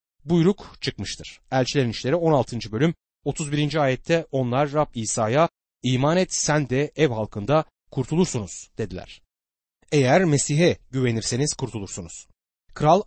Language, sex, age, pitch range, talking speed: Turkish, male, 30-49, 110-165 Hz, 110 wpm